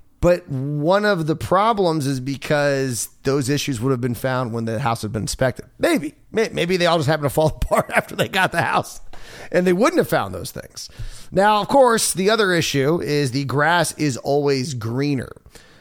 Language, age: English, 30-49